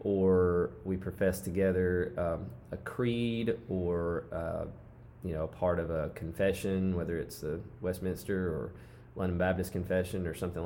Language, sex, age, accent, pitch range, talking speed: English, male, 20-39, American, 85-95 Hz, 145 wpm